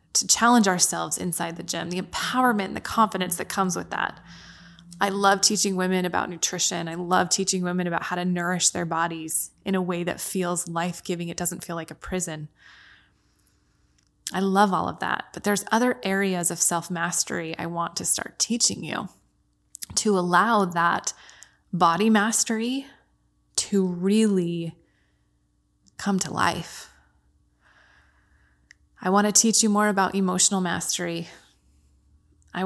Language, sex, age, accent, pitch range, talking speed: English, female, 20-39, American, 170-195 Hz, 145 wpm